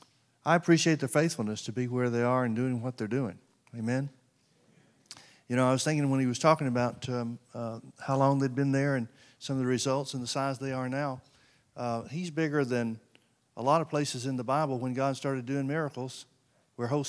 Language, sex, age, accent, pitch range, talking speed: English, male, 50-69, American, 125-155 Hz, 215 wpm